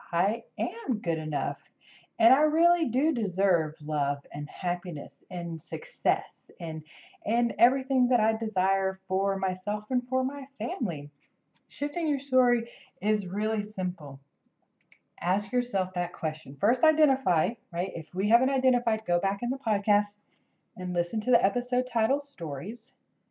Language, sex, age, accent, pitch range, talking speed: English, female, 30-49, American, 170-245 Hz, 140 wpm